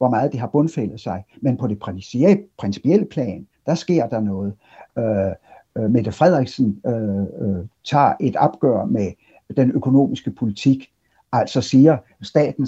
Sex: male